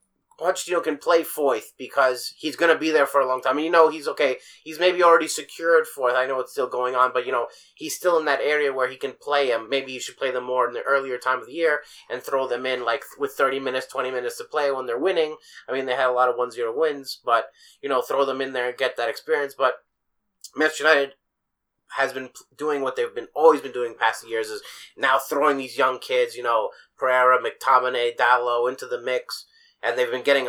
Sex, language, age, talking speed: male, English, 30-49, 250 wpm